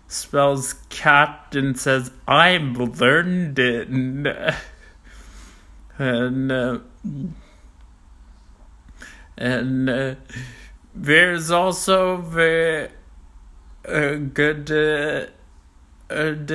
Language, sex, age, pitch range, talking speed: English, male, 60-79, 125-150 Hz, 65 wpm